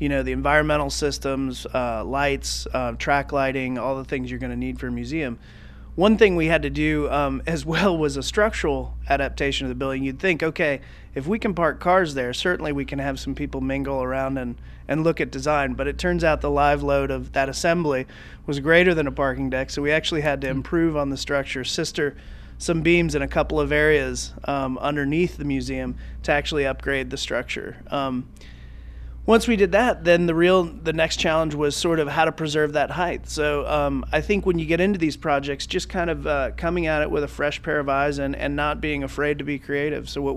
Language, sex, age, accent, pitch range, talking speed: English, male, 30-49, American, 135-160 Hz, 225 wpm